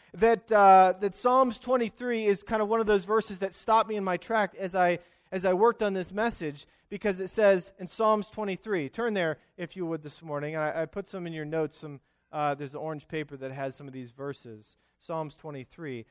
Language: English